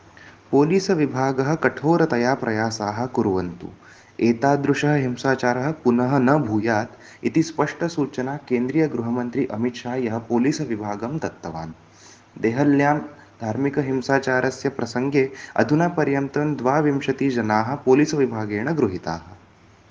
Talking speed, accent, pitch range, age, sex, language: 70 wpm, native, 110-140 Hz, 20-39, male, Hindi